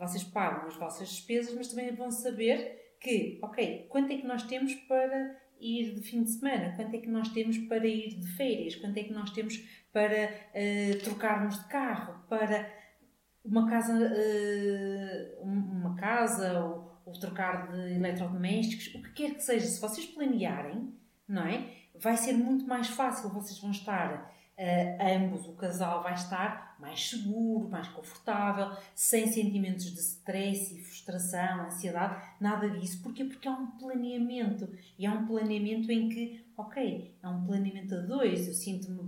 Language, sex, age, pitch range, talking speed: Portuguese, female, 40-59, 190-235 Hz, 160 wpm